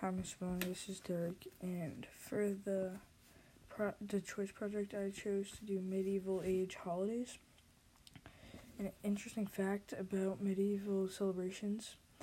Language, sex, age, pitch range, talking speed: English, female, 10-29, 185-205 Hz, 125 wpm